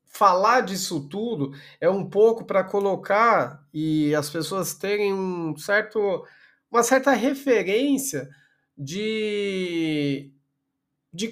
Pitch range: 180-270 Hz